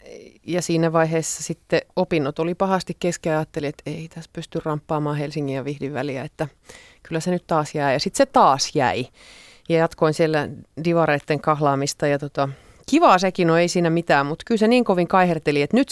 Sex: female